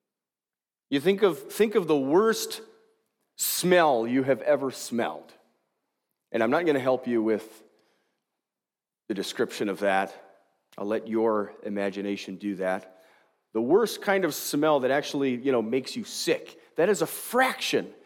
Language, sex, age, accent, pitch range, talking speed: English, male, 40-59, American, 125-210 Hz, 155 wpm